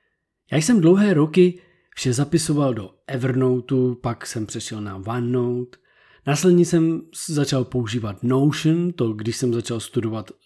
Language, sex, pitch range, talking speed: Czech, male, 125-165 Hz, 130 wpm